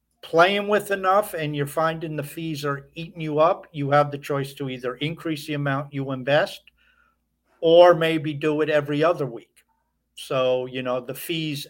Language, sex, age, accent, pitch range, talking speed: English, male, 50-69, American, 130-155 Hz, 180 wpm